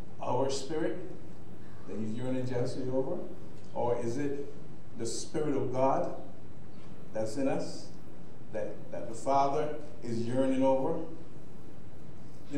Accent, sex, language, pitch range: American, male, English, 120-155 Hz